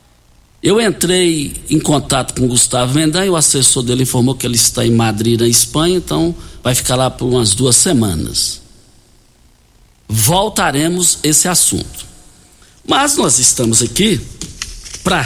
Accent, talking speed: Brazilian, 140 wpm